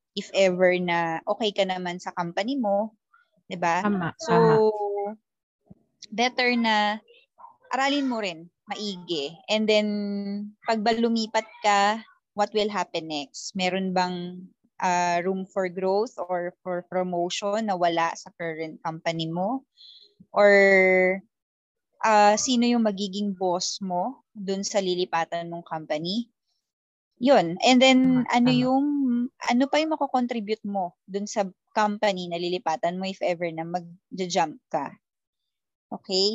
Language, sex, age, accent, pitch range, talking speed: Filipino, female, 20-39, native, 180-240 Hz, 125 wpm